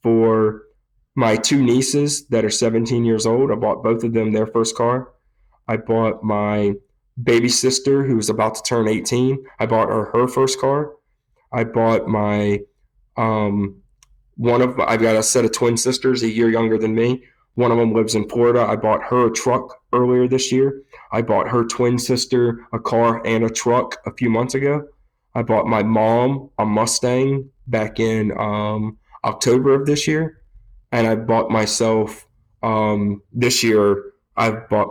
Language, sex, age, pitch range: English, male, 20-39, 105-120 Hz